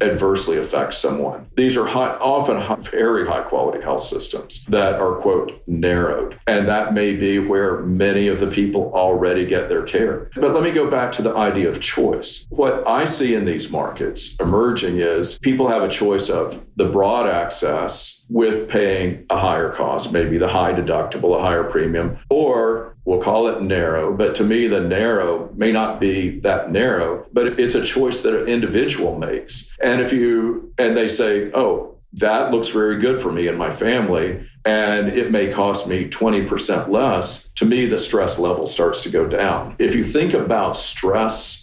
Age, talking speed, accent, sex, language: 50-69, 180 wpm, American, male, English